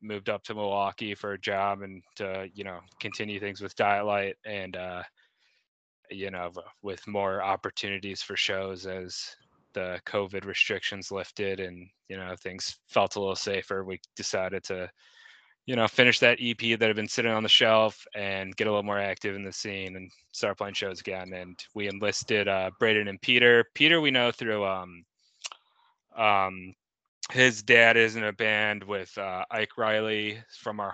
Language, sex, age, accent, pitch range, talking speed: English, male, 20-39, American, 95-105 Hz, 180 wpm